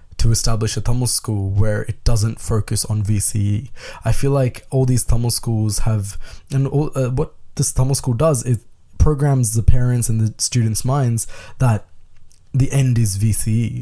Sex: male